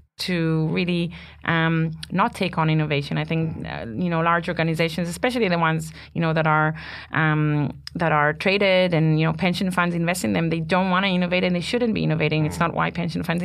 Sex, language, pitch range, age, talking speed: female, English, 160-195 Hz, 30-49, 215 wpm